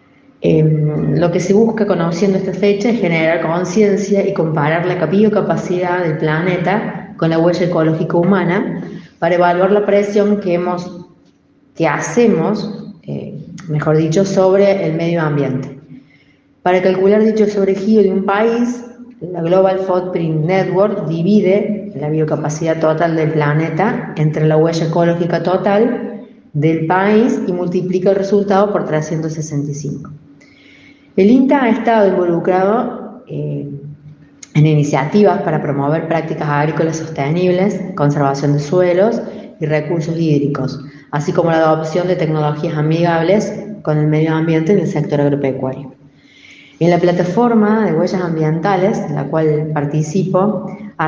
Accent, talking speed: Argentinian, 135 wpm